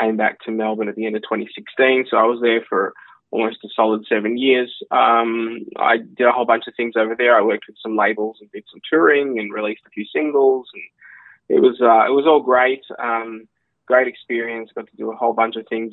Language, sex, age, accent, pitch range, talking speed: English, male, 20-39, Australian, 110-125 Hz, 235 wpm